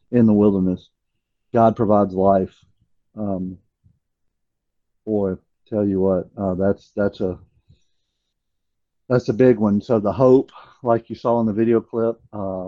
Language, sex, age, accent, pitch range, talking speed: English, male, 50-69, American, 95-110 Hz, 140 wpm